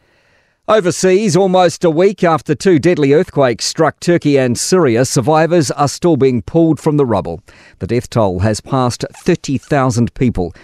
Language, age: English, 50-69